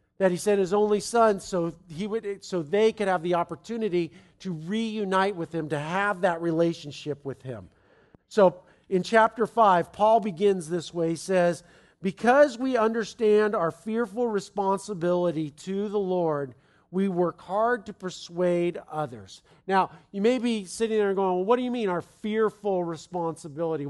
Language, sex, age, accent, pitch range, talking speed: English, male, 50-69, American, 165-215 Hz, 165 wpm